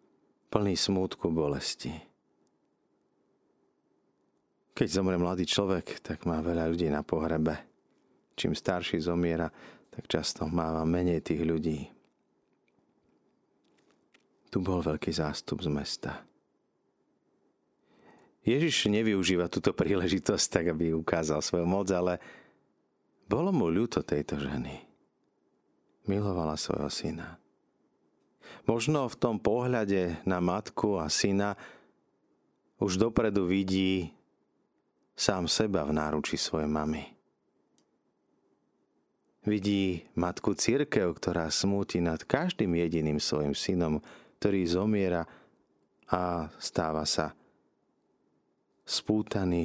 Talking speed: 95 wpm